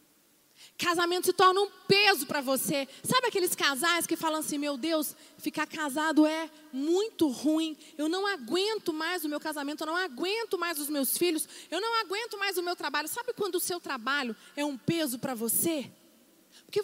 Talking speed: 185 wpm